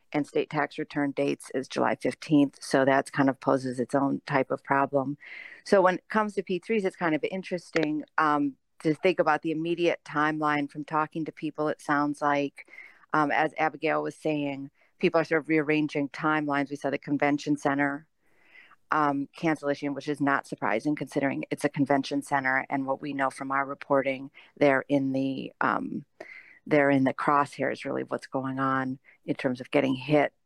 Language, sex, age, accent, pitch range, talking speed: English, female, 40-59, American, 140-150 Hz, 185 wpm